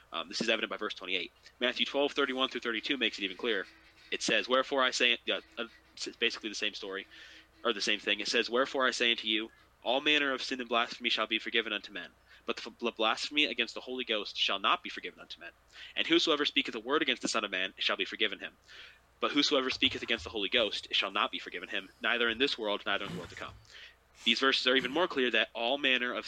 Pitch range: 110-130 Hz